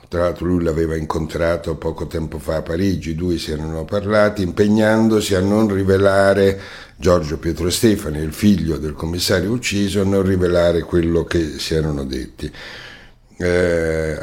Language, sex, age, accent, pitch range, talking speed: Italian, male, 60-79, native, 80-95 Hz, 150 wpm